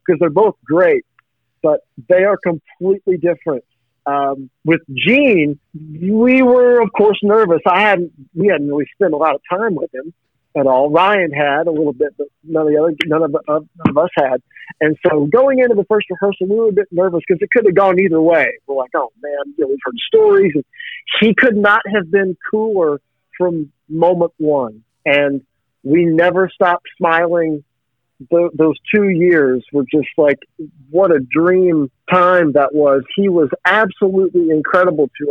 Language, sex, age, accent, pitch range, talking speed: English, male, 50-69, American, 145-185 Hz, 185 wpm